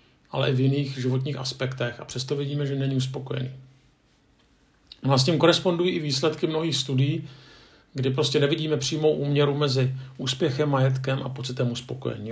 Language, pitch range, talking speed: Czech, 125-145 Hz, 155 wpm